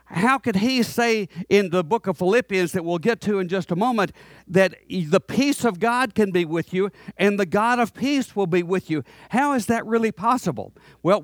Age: 50-69